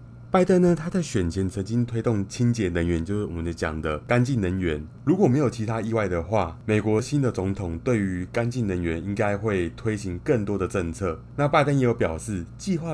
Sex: male